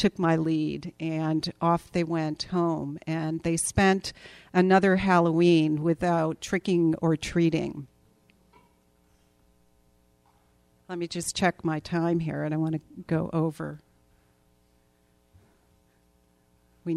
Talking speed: 110 wpm